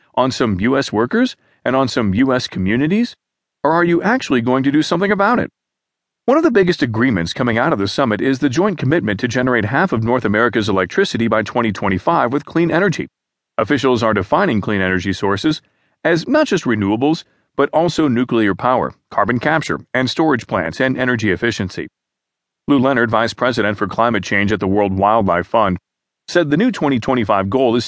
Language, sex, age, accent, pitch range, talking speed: English, male, 40-59, American, 105-140 Hz, 185 wpm